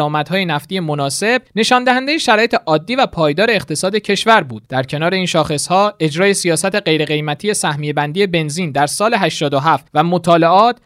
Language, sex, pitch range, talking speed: Persian, male, 155-215 Hz, 155 wpm